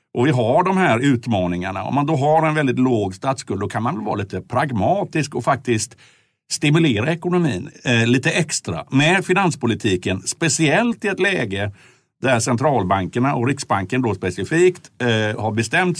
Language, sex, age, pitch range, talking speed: Swedish, male, 60-79, 105-145 Hz, 160 wpm